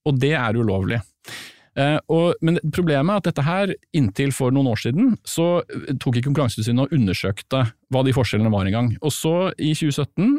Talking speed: 195 wpm